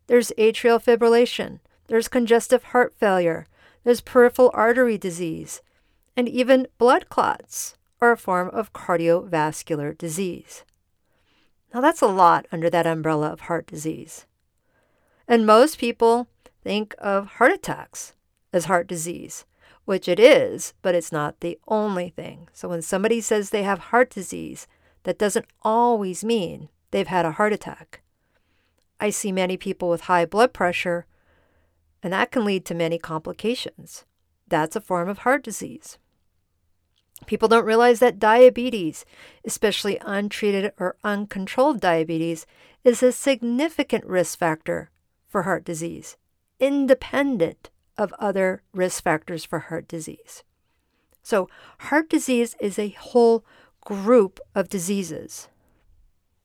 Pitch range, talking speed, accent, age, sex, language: 170-235 Hz, 130 wpm, American, 50-69, female, English